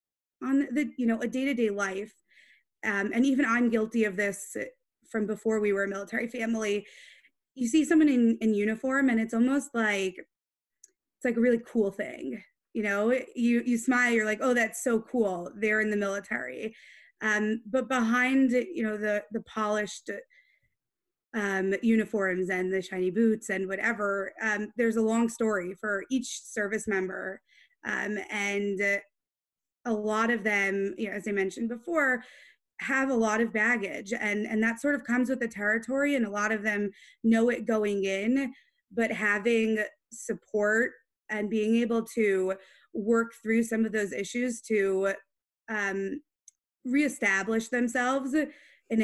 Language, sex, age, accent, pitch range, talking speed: English, female, 20-39, American, 205-240 Hz, 160 wpm